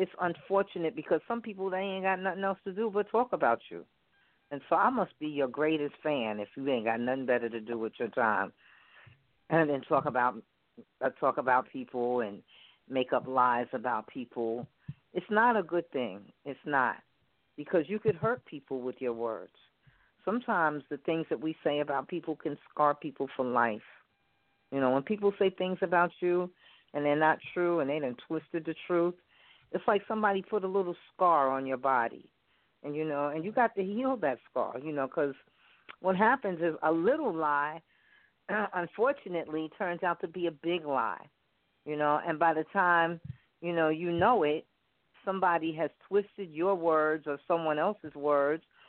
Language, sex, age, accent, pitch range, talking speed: English, female, 40-59, American, 145-185 Hz, 185 wpm